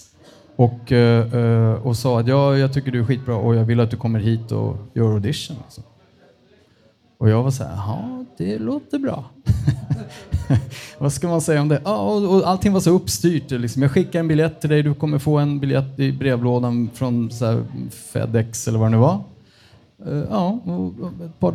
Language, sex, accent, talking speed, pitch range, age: Swedish, male, Norwegian, 185 wpm, 115-145 Hz, 30-49